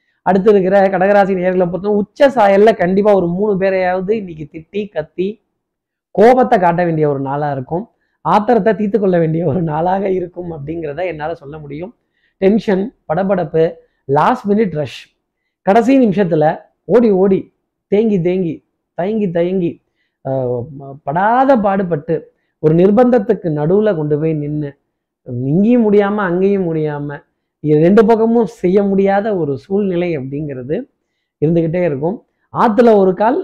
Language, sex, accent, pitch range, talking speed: Tamil, male, native, 155-200 Hz, 120 wpm